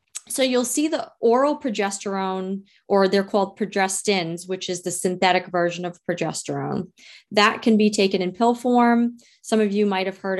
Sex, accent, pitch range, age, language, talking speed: female, American, 185-215 Hz, 30-49, English, 165 wpm